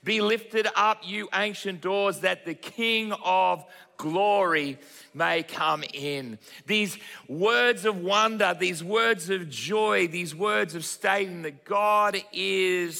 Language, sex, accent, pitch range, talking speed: English, male, Australian, 150-195 Hz, 135 wpm